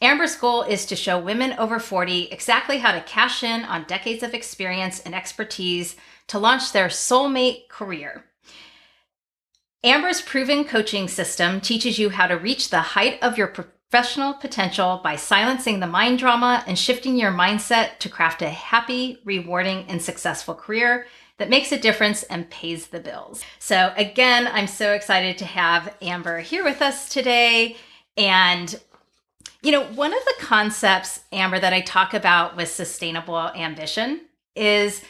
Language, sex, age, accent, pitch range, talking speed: English, female, 30-49, American, 180-245 Hz, 155 wpm